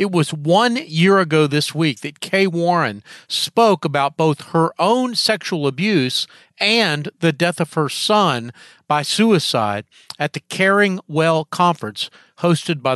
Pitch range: 140-195 Hz